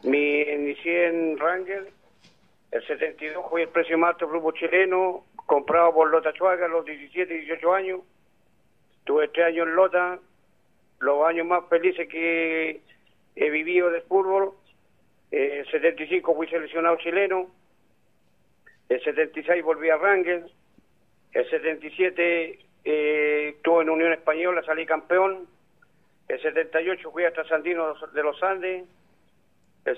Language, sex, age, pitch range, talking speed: Spanish, male, 50-69, 155-180 Hz, 130 wpm